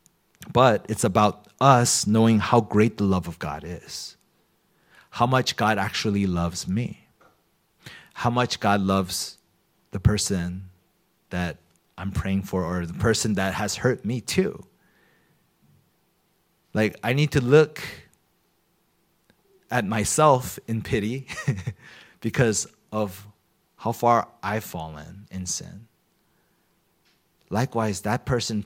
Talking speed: 115 wpm